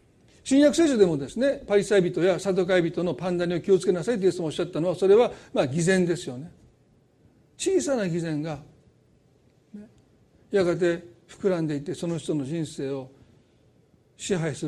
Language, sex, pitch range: Japanese, male, 150-210 Hz